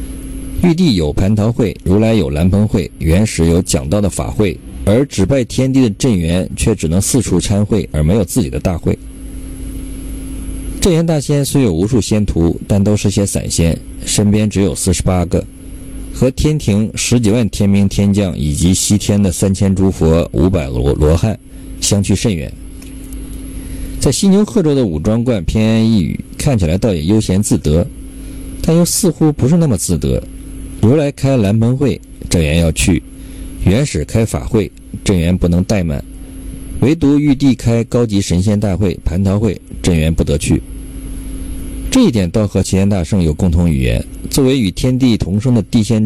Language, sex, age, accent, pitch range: Chinese, male, 50-69, native, 90-120 Hz